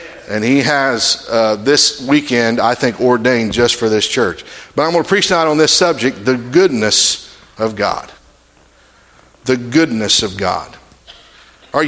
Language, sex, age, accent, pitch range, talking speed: English, male, 50-69, American, 120-150 Hz, 155 wpm